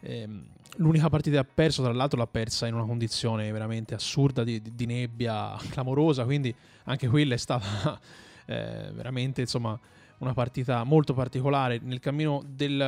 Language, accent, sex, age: Italian, native, male, 20-39